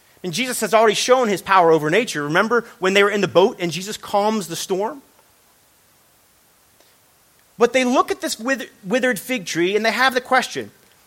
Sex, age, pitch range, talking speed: male, 30-49, 200-275 Hz, 185 wpm